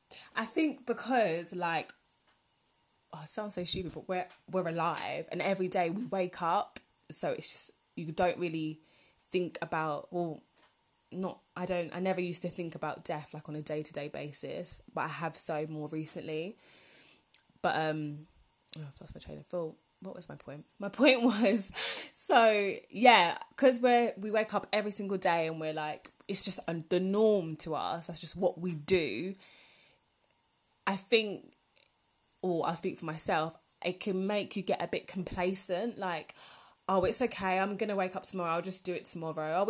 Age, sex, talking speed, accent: 20-39, female, 180 wpm, British